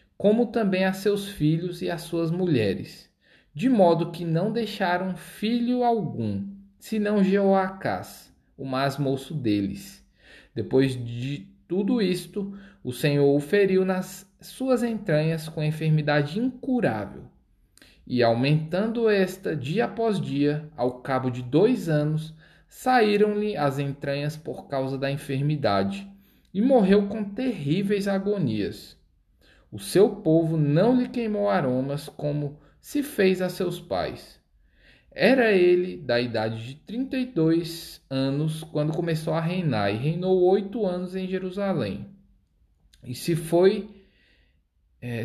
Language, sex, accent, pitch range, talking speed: Portuguese, male, Brazilian, 130-195 Hz, 125 wpm